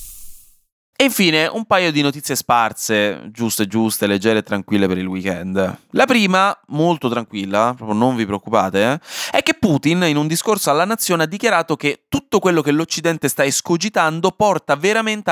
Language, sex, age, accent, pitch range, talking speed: Italian, male, 20-39, native, 115-170 Hz, 165 wpm